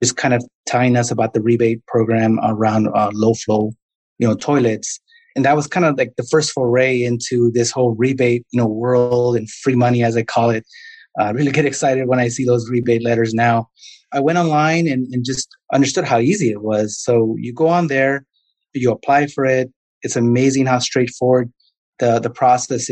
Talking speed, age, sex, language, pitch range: 205 wpm, 30-49, male, English, 120-145 Hz